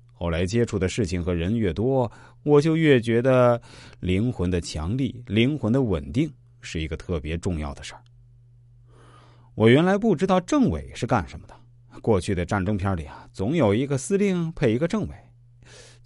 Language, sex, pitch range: Chinese, male, 95-125 Hz